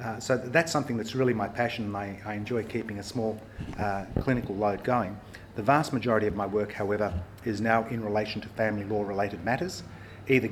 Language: English